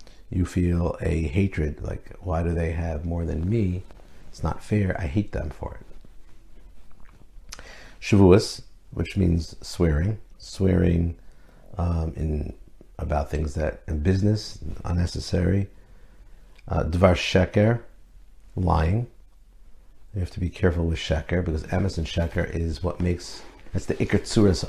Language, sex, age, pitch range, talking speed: English, male, 50-69, 85-100 Hz, 135 wpm